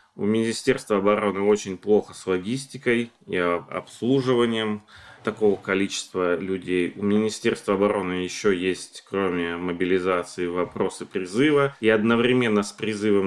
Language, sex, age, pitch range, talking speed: Russian, male, 30-49, 90-110 Hz, 115 wpm